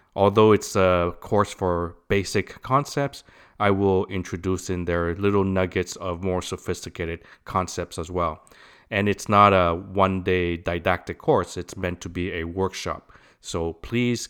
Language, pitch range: English, 90-110 Hz